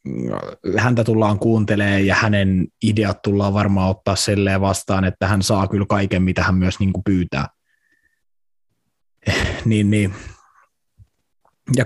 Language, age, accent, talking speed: Finnish, 20-39, native, 125 wpm